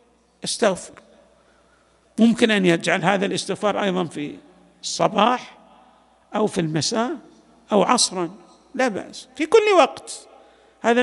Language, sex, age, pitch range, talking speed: Arabic, male, 50-69, 180-250 Hz, 110 wpm